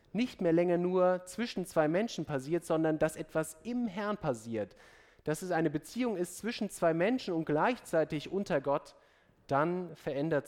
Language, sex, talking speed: German, male, 160 wpm